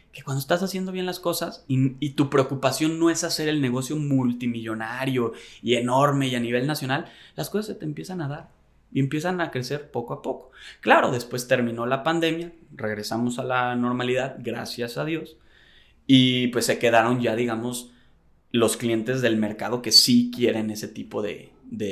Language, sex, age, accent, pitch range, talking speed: Spanish, male, 20-39, Mexican, 115-145 Hz, 180 wpm